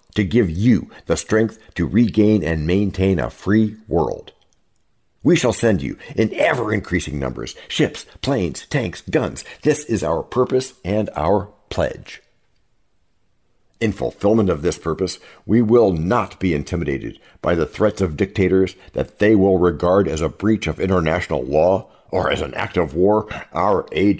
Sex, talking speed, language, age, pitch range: male, 155 wpm, English, 60-79, 85-110 Hz